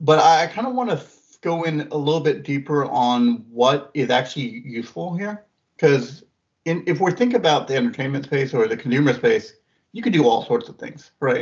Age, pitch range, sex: 40-59, 120-160 Hz, male